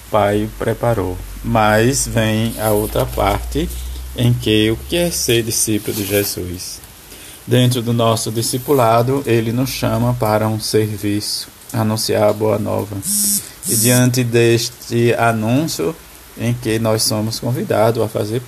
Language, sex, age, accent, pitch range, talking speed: Portuguese, male, 20-39, Brazilian, 105-120 Hz, 130 wpm